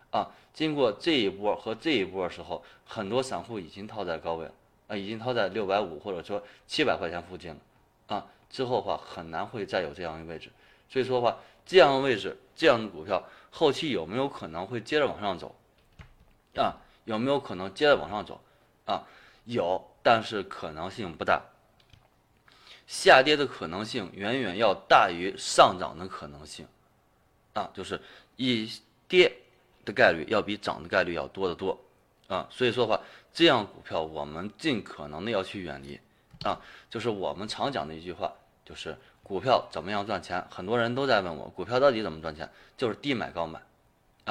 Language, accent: Chinese, native